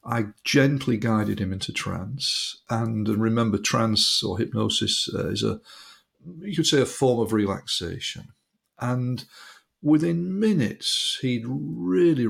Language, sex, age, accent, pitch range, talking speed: English, male, 50-69, British, 110-140 Hz, 120 wpm